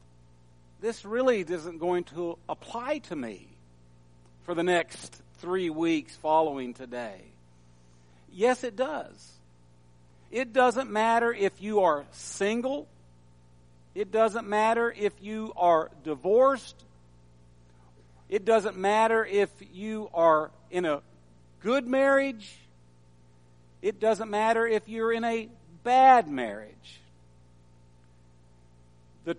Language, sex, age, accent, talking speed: English, male, 50-69, American, 105 wpm